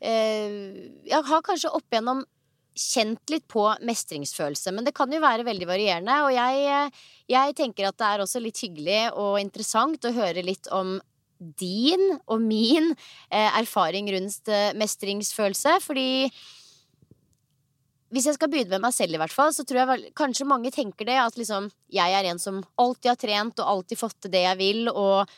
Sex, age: female, 20-39